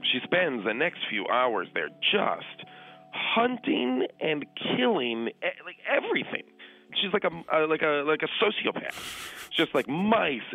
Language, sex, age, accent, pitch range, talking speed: English, male, 40-59, American, 115-190 Hz, 140 wpm